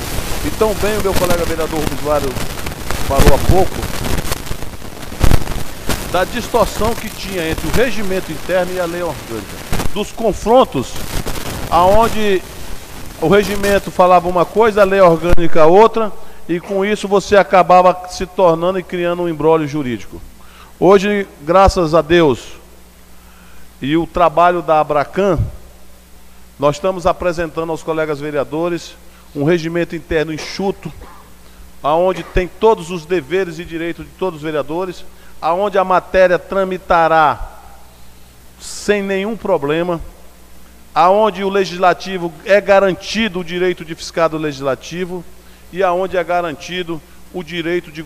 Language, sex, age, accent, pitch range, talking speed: Portuguese, male, 50-69, Brazilian, 150-190 Hz, 125 wpm